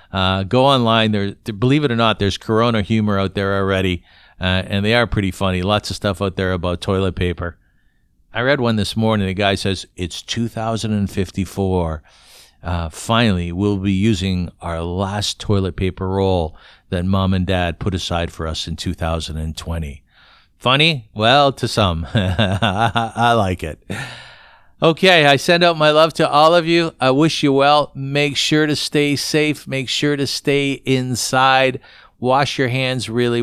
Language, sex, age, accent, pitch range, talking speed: English, male, 50-69, American, 100-130 Hz, 165 wpm